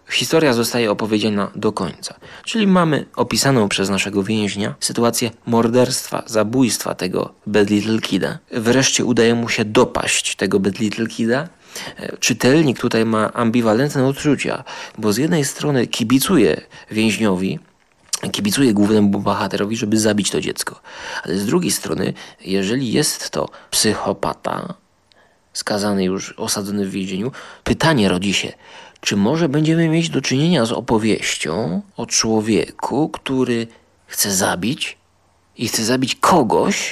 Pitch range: 105-140 Hz